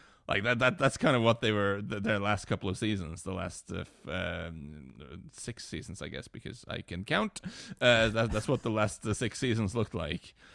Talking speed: 205 wpm